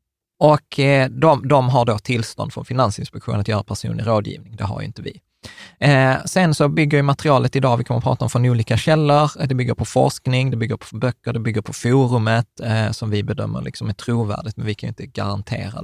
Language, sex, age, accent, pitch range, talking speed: Swedish, male, 20-39, native, 110-135 Hz, 210 wpm